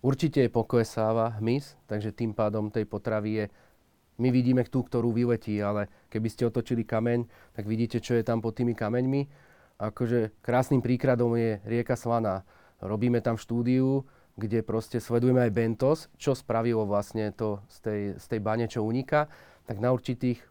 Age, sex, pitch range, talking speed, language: 30-49, male, 110-125 Hz, 165 wpm, Slovak